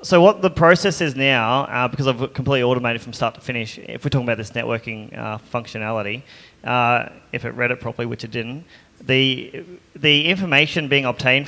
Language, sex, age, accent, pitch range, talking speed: English, male, 20-39, Australian, 115-140 Hz, 195 wpm